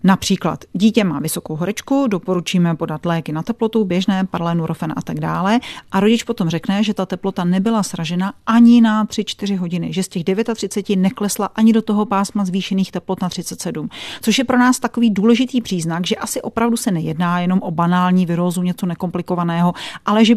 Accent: native